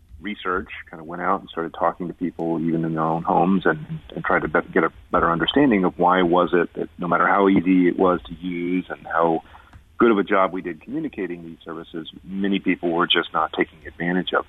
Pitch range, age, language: 80-95 Hz, 40-59, English